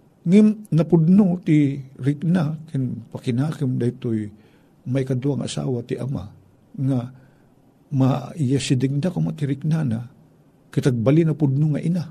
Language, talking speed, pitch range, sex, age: Filipino, 130 wpm, 120-160 Hz, male, 50-69